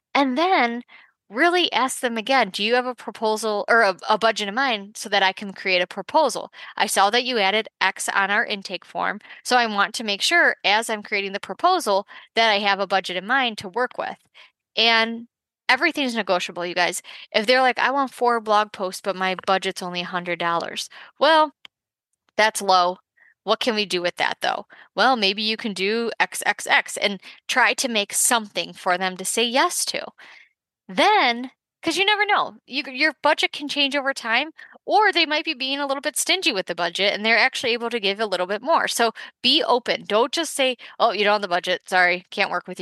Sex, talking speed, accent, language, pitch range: female, 210 wpm, American, English, 195-270 Hz